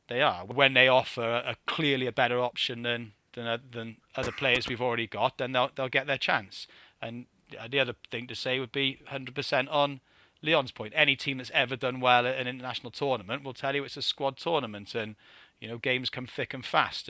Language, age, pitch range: English, 30-49, 115-135 Hz